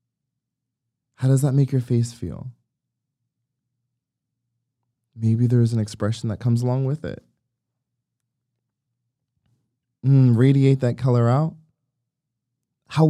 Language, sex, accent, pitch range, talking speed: English, male, American, 120-140 Hz, 100 wpm